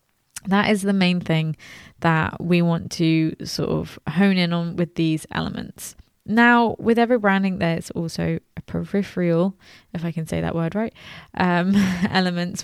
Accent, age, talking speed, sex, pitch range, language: British, 20-39, 160 wpm, female, 165-190 Hz, English